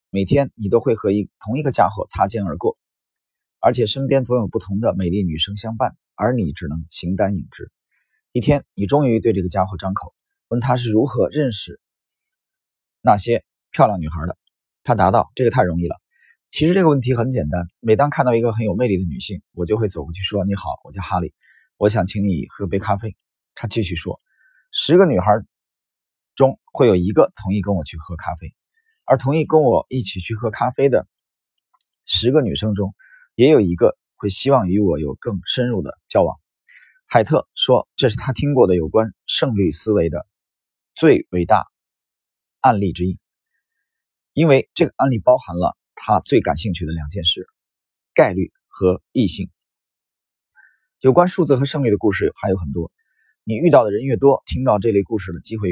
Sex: male